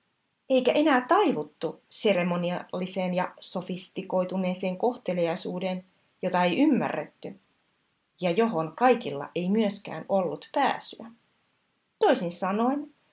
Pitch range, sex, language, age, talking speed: 170-225 Hz, female, Finnish, 30-49, 85 wpm